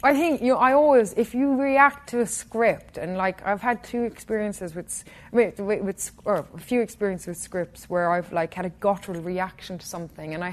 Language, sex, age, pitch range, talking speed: English, female, 20-39, 165-210 Hz, 230 wpm